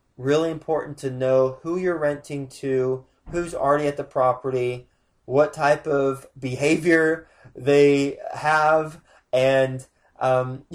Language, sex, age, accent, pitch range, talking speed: English, male, 20-39, American, 125-150 Hz, 115 wpm